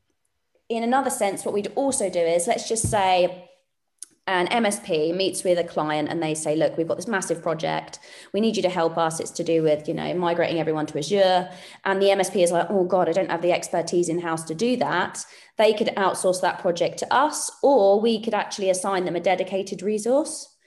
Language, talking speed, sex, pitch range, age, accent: English, 215 wpm, female, 175-225 Hz, 20-39, British